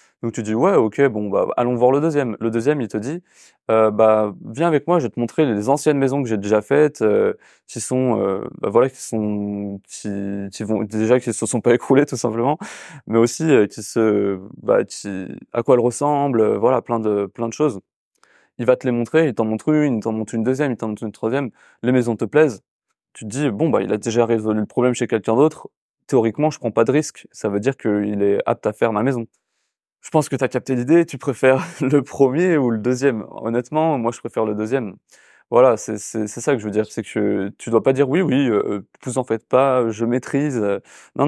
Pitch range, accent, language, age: 110-140 Hz, French, French, 20-39